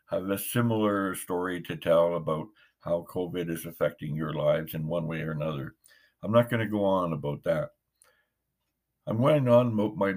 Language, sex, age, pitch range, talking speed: English, male, 60-79, 85-115 Hz, 185 wpm